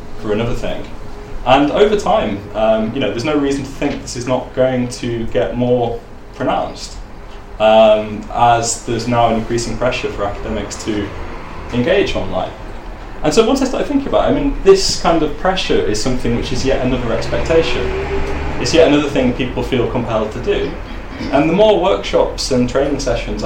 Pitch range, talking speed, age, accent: 105-145 Hz, 180 wpm, 20-39, British